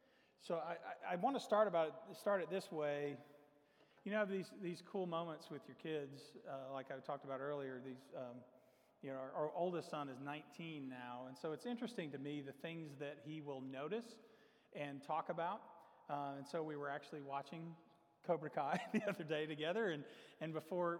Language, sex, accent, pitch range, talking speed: English, male, American, 140-170 Hz, 200 wpm